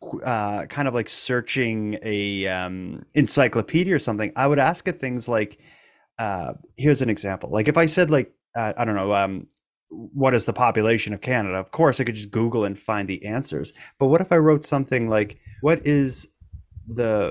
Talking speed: 195 wpm